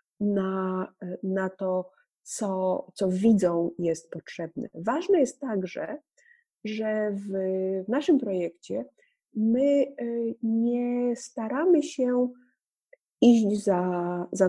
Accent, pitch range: native, 185-245 Hz